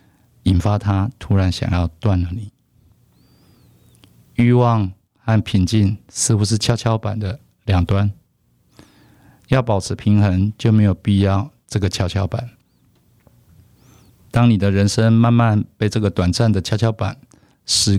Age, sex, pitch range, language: 50-69, male, 95-115 Hz, Chinese